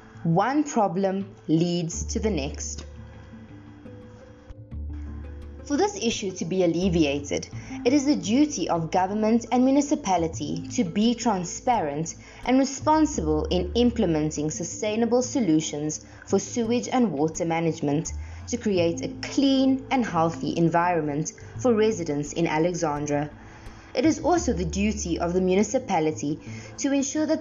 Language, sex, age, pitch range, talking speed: English, female, 20-39, 150-245 Hz, 125 wpm